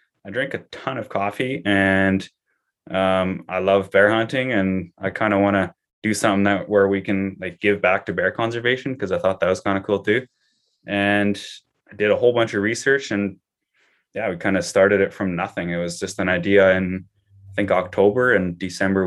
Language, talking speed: English, 210 wpm